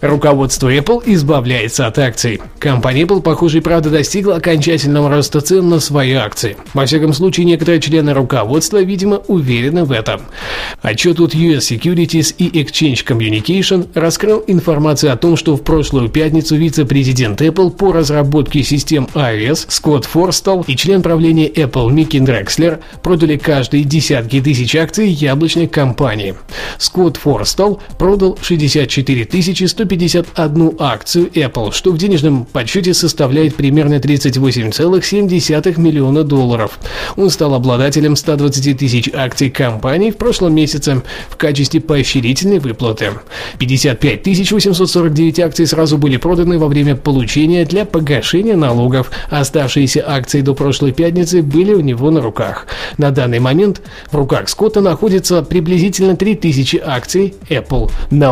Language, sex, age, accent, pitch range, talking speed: Russian, male, 20-39, native, 135-175 Hz, 130 wpm